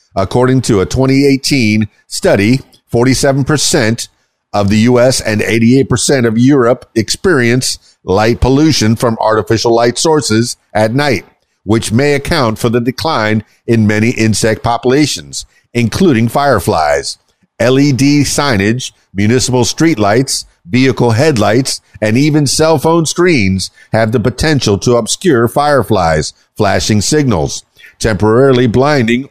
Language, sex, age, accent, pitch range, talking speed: English, male, 50-69, American, 110-140 Hz, 115 wpm